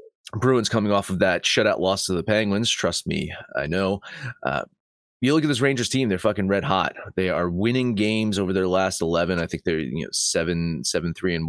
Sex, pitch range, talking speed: male, 100-130 Hz, 215 wpm